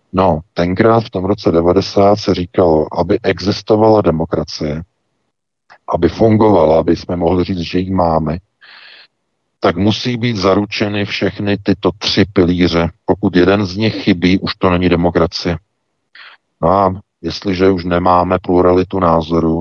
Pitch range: 85-110 Hz